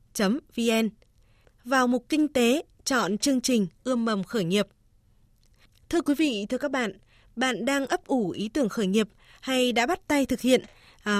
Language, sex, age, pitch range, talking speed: Vietnamese, female, 20-39, 210-270 Hz, 175 wpm